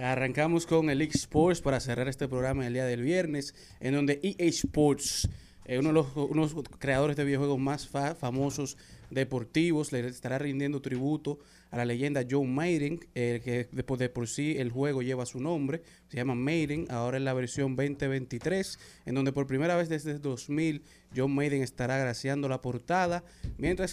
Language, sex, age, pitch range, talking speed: Spanish, male, 30-49, 130-145 Hz, 170 wpm